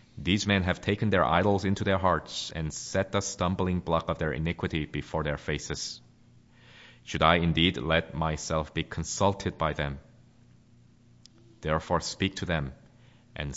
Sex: male